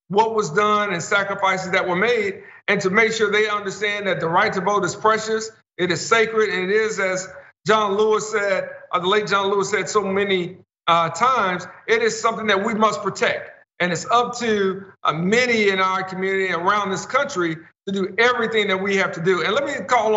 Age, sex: 50-69, male